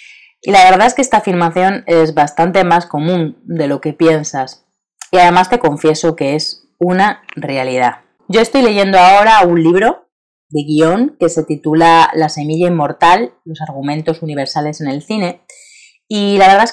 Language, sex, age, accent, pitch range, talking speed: Spanish, female, 30-49, Spanish, 155-190 Hz, 170 wpm